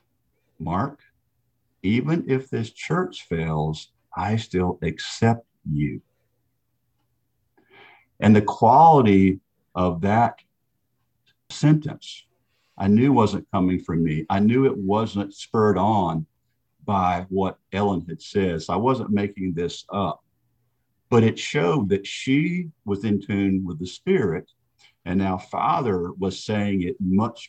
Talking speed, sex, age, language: 120 wpm, male, 50-69, English